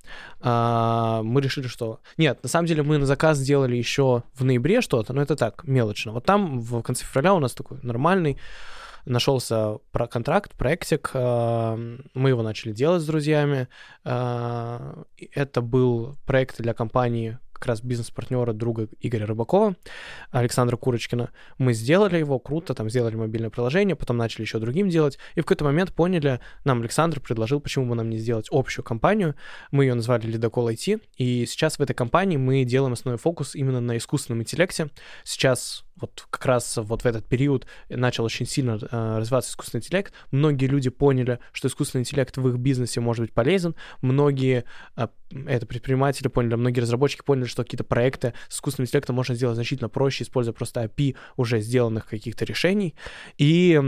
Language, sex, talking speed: Russian, male, 165 wpm